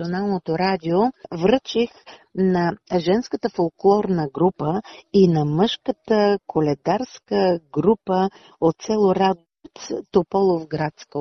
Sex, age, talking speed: female, 40-59, 75 wpm